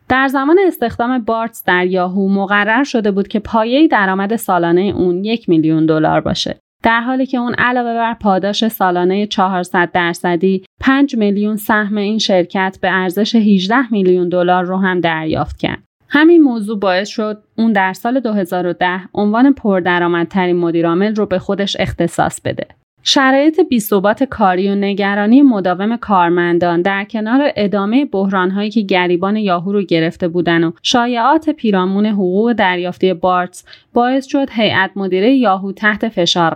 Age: 30-49